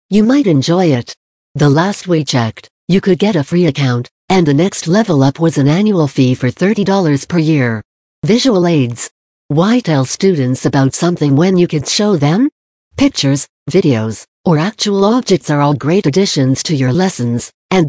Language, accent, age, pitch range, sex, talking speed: English, American, 60-79, 135-185 Hz, female, 180 wpm